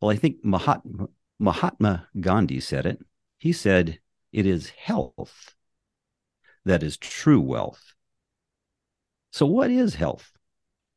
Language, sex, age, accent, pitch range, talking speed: English, male, 50-69, American, 85-110 Hz, 115 wpm